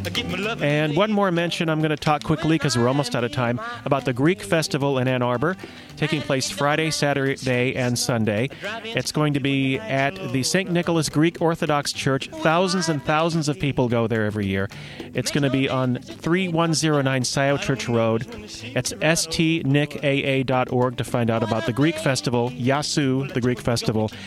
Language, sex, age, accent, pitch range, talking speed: English, male, 40-59, American, 125-155 Hz, 175 wpm